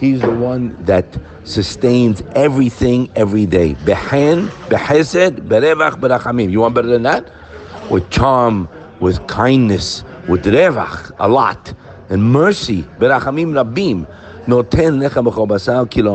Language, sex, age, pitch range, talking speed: English, male, 60-79, 110-140 Hz, 120 wpm